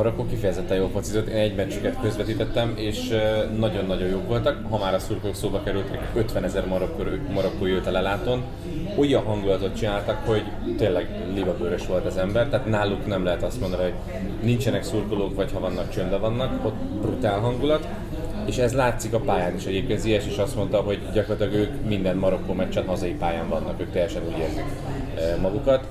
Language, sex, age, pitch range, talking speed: Hungarian, male, 30-49, 95-115 Hz, 180 wpm